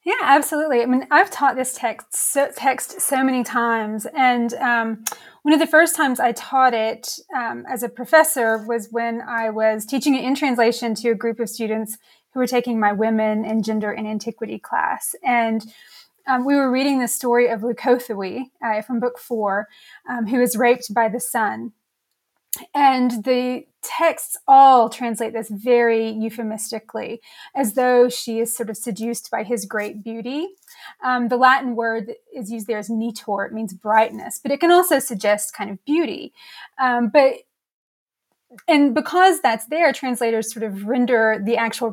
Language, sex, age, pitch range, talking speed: English, female, 20-39, 220-265 Hz, 175 wpm